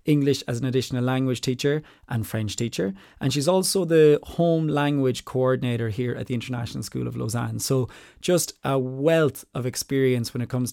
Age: 20-39